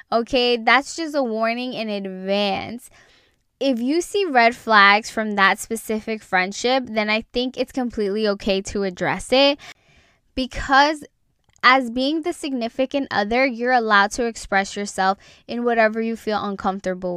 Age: 10-29